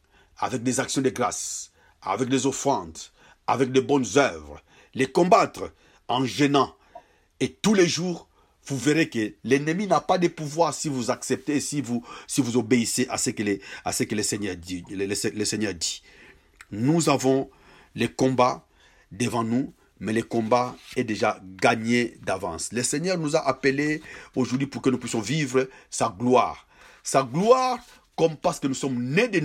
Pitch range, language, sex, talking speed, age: 110-150 Hz, French, male, 175 wpm, 50-69